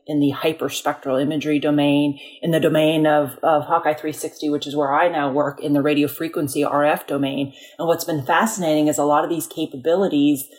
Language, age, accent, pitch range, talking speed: English, 30-49, American, 150-165 Hz, 195 wpm